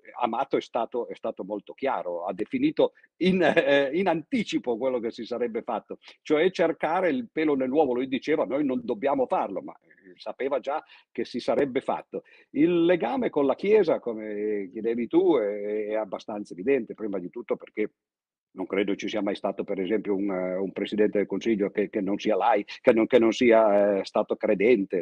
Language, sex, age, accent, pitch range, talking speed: Italian, male, 50-69, native, 105-165 Hz, 195 wpm